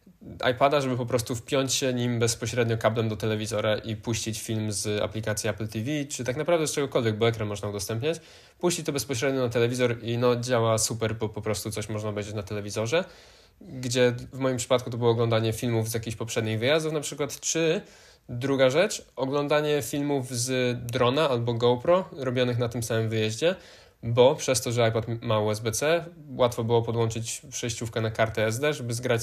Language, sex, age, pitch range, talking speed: Polish, male, 20-39, 110-130 Hz, 180 wpm